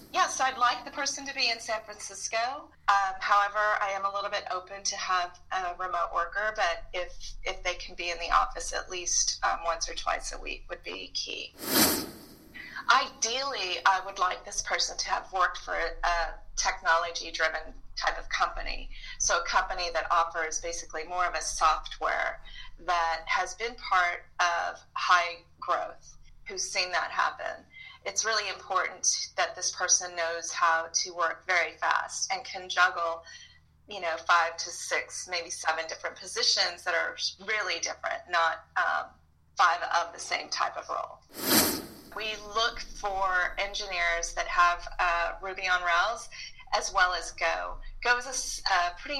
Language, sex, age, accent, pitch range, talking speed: English, female, 30-49, American, 175-215 Hz, 165 wpm